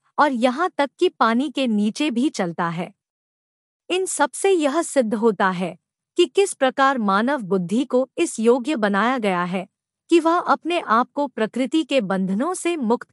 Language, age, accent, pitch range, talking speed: Hindi, 50-69, native, 220-295 Hz, 175 wpm